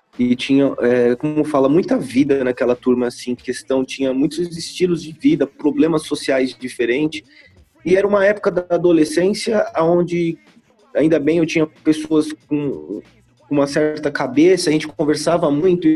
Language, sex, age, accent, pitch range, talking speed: Portuguese, male, 20-39, Brazilian, 145-185 Hz, 145 wpm